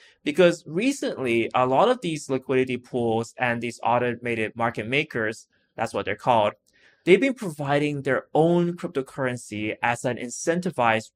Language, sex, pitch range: English, male, 115-150 Hz